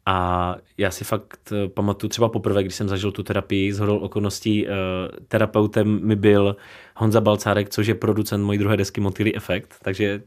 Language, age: Czech, 30-49